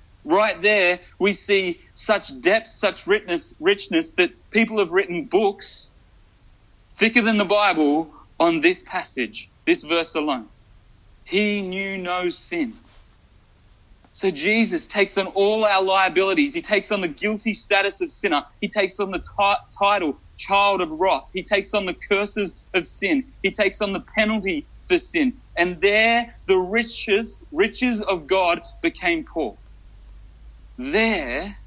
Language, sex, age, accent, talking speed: English, male, 30-49, Australian, 140 wpm